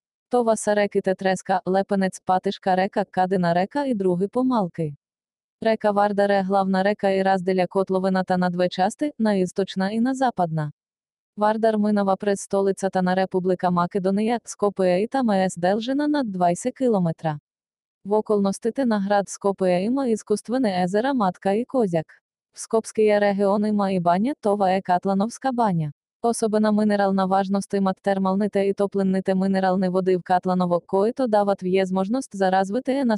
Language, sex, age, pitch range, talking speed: Bulgarian, female, 20-39, 185-210 Hz, 135 wpm